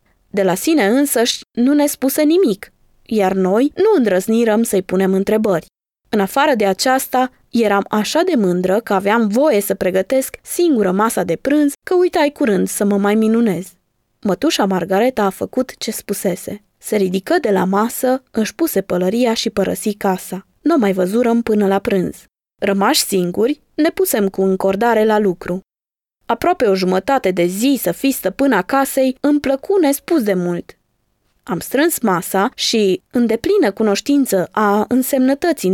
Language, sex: Romanian, female